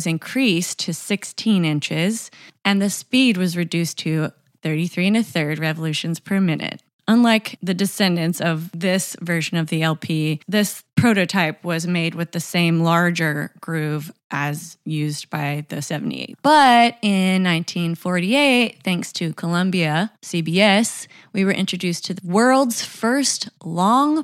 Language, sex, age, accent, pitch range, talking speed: English, female, 20-39, American, 160-210 Hz, 135 wpm